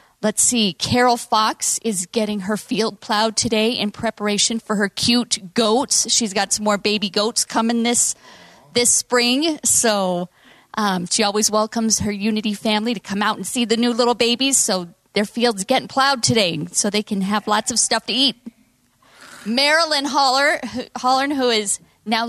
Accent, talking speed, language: American, 170 wpm, English